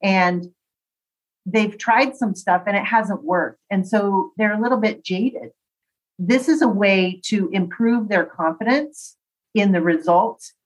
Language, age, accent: English, 40-59, American